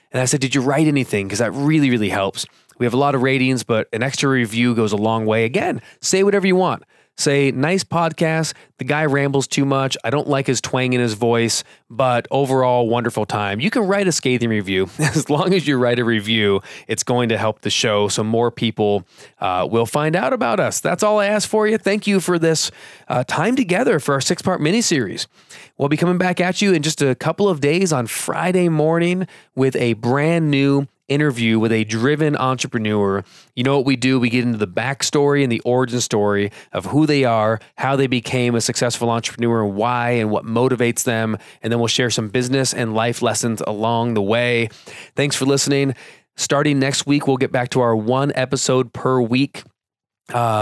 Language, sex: English, male